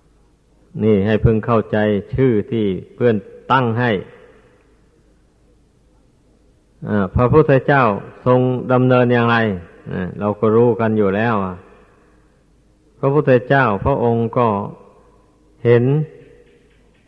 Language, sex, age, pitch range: Thai, male, 50-69, 115-130 Hz